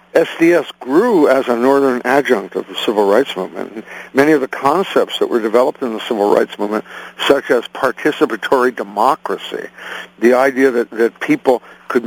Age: 60-79